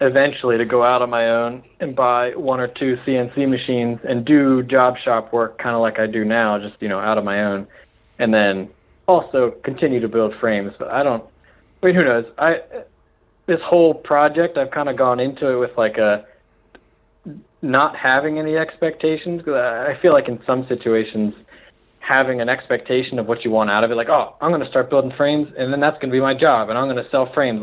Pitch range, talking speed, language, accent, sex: 115-135 Hz, 220 wpm, English, American, male